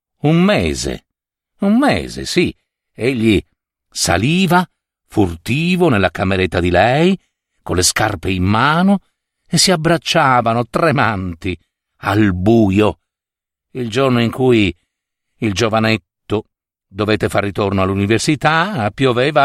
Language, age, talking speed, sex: Italian, 50-69, 105 wpm, male